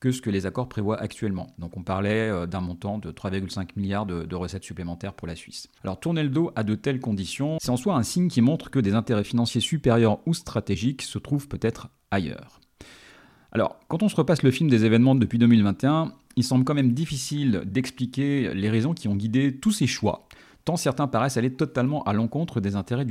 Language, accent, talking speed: French, French, 210 wpm